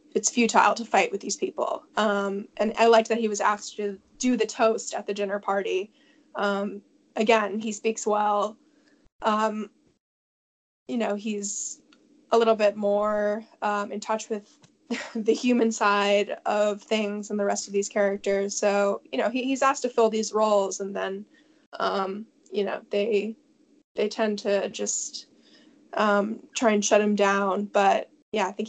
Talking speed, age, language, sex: 165 wpm, 10-29, English, female